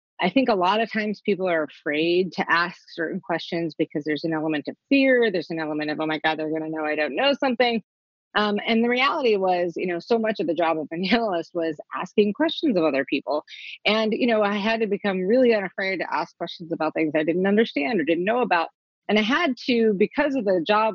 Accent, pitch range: American, 165-225 Hz